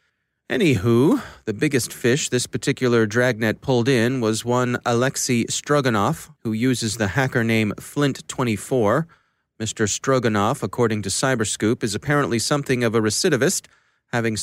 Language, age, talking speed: English, 30-49, 130 wpm